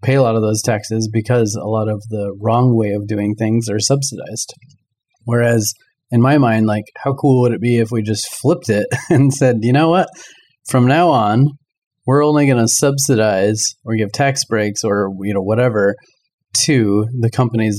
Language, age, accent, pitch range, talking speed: English, 30-49, American, 105-125 Hz, 190 wpm